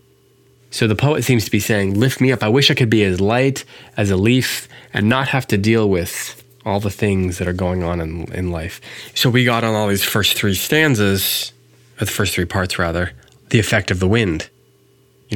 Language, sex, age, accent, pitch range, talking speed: English, male, 20-39, American, 95-125 Hz, 225 wpm